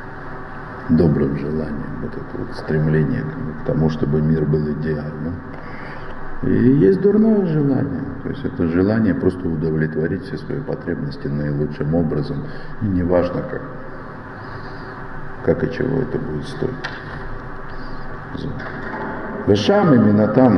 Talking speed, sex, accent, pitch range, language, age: 115 wpm, male, native, 80-130 Hz, Russian, 50-69